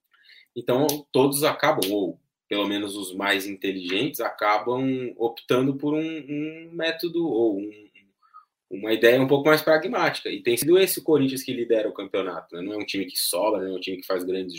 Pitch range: 115-160 Hz